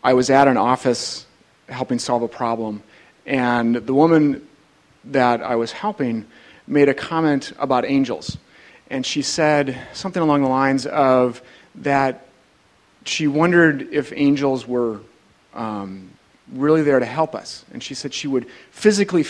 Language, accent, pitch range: English, American, 125-160 Hz